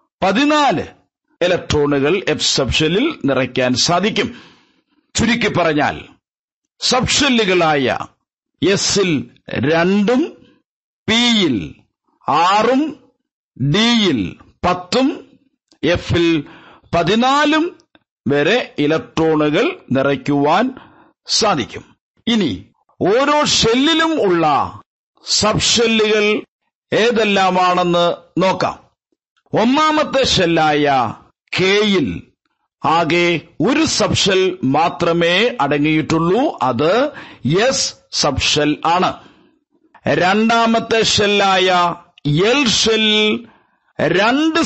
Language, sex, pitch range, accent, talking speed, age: Malayalam, male, 170-240 Hz, native, 60 wpm, 50-69